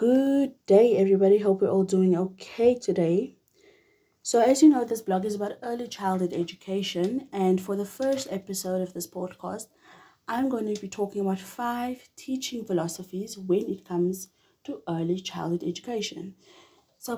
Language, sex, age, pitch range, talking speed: English, female, 20-39, 180-225 Hz, 155 wpm